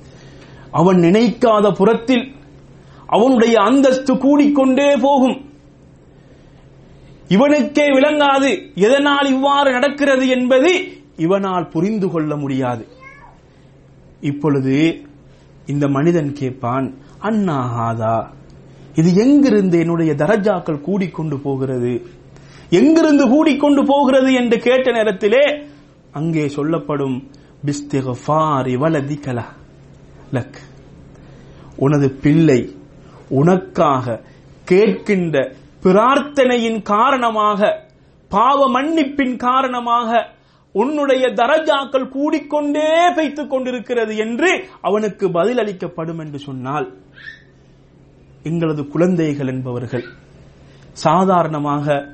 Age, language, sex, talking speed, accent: 30-49, Tamil, male, 70 wpm, native